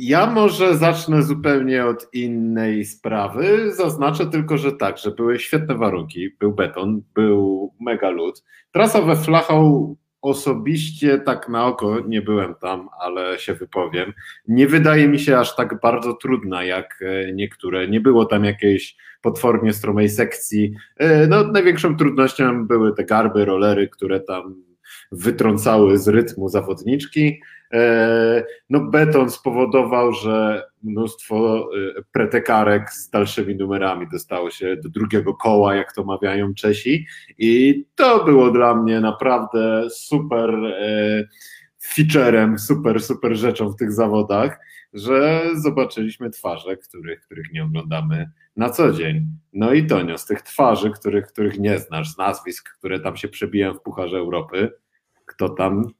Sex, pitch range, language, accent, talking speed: male, 105-145 Hz, Polish, native, 135 wpm